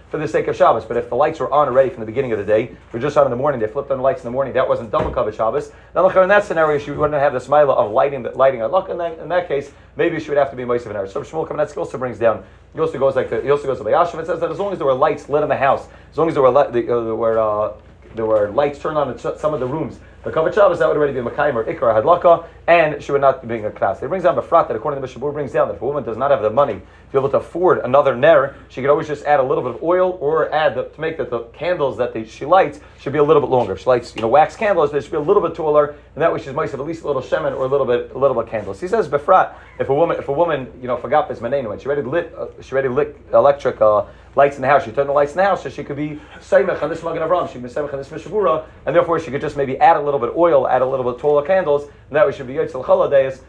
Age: 30-49